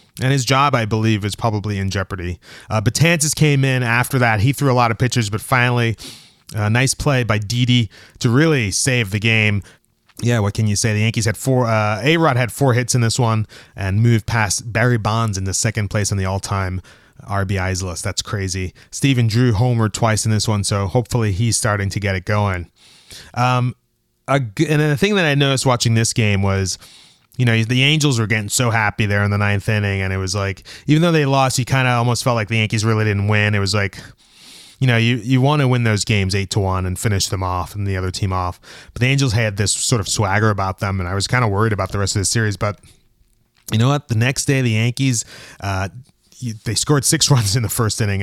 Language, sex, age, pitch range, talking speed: English, male, 20-39, 100-125 Hz, 230 wpm